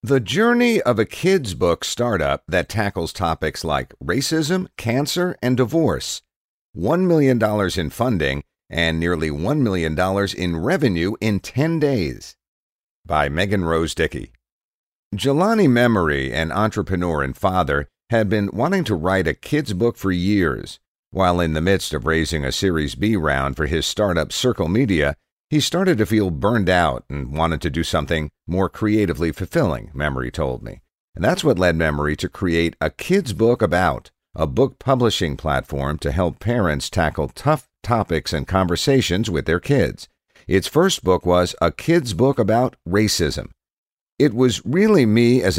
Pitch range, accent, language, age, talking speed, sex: 80-120 Hz, American, English, 50-69, 160 wpm, male